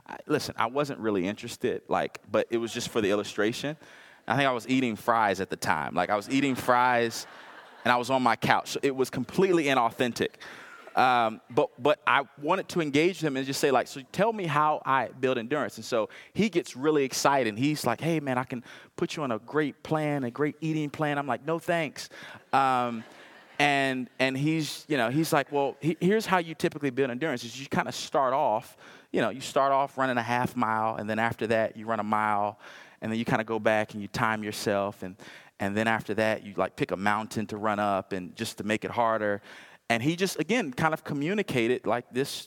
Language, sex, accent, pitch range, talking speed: English, male, American, 115-150 Hz, 230 wpm